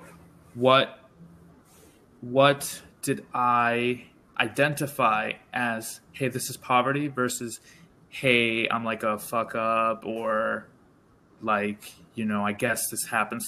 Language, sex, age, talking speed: English, male, 20-39, 110 wpm